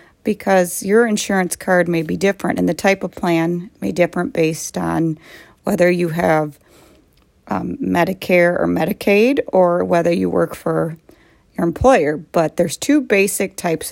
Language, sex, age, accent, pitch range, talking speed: English, female, 40-59, American, 155-195 Hz, 150 wpm